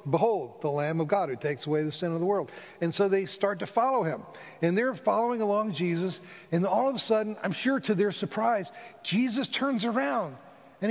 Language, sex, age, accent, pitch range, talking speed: English, male, 50-69, American, 145-210 Hz, 215 wpm